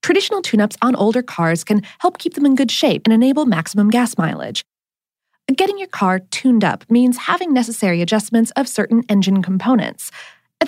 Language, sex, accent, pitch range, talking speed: English, female, American, 185-290 Hz, 175 wpm